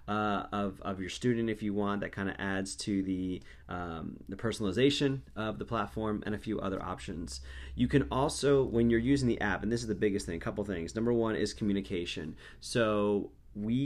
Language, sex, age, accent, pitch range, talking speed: English, male, 30-49, American, 95-115 Hz, 210 wpm